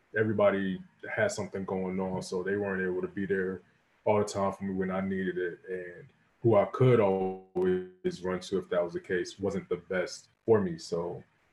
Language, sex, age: English, male, 20-39